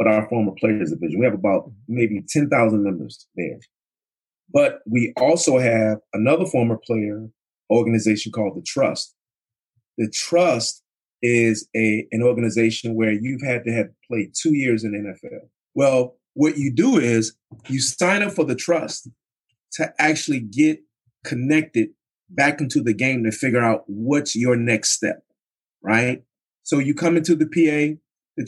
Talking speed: 155 wpm